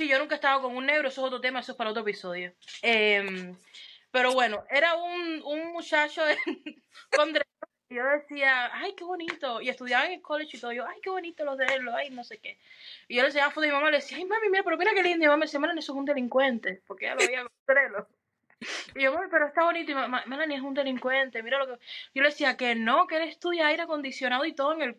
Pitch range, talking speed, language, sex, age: 245-315 Hz, 270 wpm, Spanish, female, 20-39